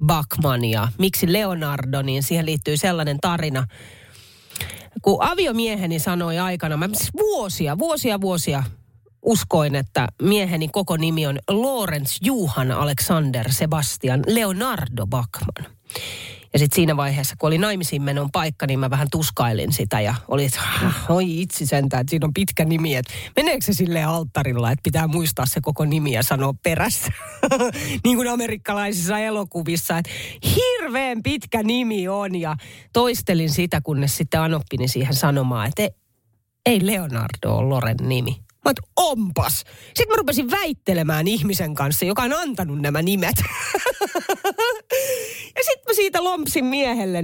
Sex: female